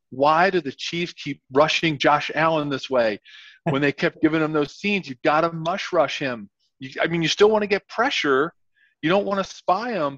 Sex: male